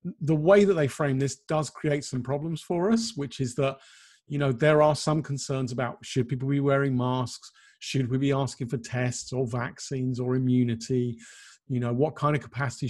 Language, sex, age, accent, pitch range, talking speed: English, male, 40-59, British, 120-145 Hz, 200 wpm